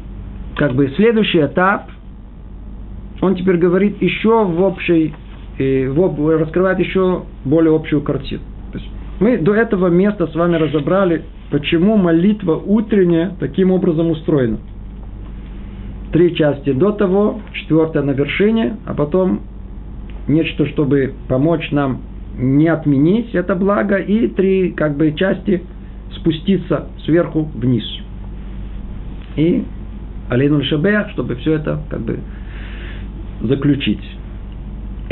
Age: 50-69